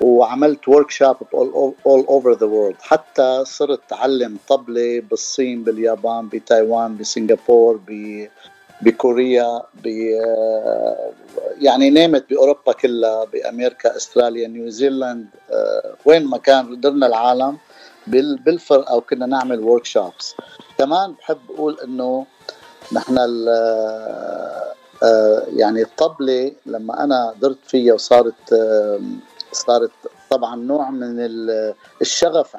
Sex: male